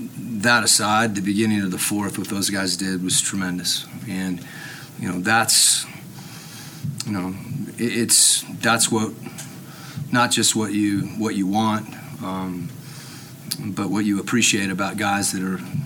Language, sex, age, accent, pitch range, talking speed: English, male, 30-49, American, 95-115 Hz, 145 wpm